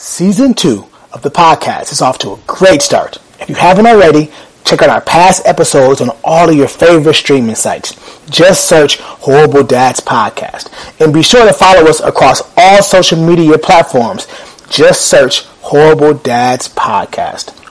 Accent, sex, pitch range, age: American, male, 145-190 Hz, 30-49